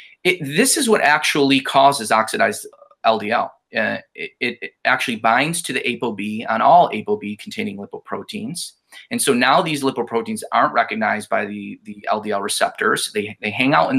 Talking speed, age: 165 wpm, 20-39